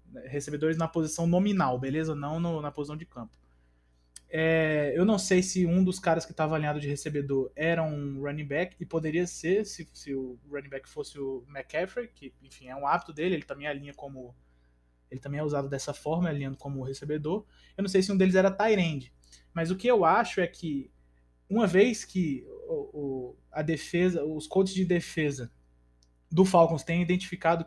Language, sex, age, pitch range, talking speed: Portuguese, male, 20-39, 140-180 Hz, 180 wpm